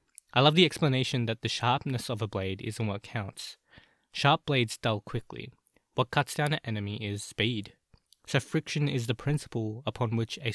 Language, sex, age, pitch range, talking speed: English, male, 20-39, 105-130 Hz, 180 wpm